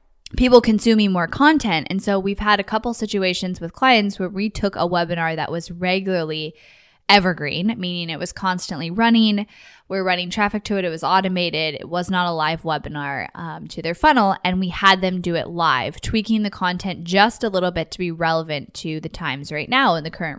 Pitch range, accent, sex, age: 165-200 Hz, American, female, 10-29